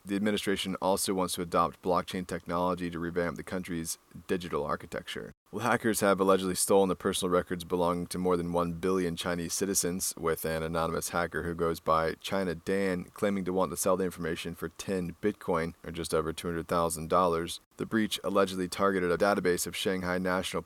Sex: male